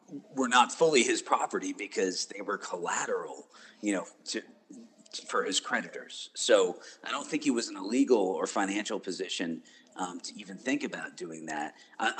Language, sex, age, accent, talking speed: English, male, 40-59, American, 175 wpm